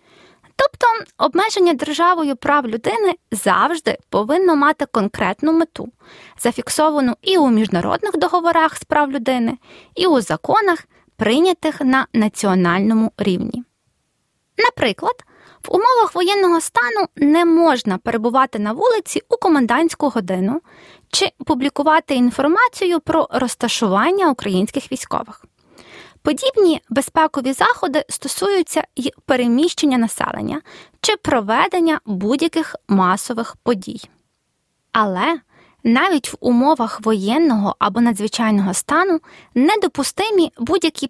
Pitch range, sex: 235-335 Hz, female